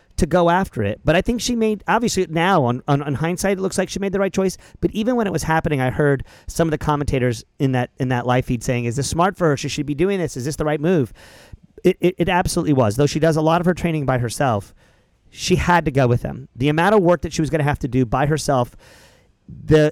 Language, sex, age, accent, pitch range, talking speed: English, male, 40-59, American, 125-165 Hz, 285 wpm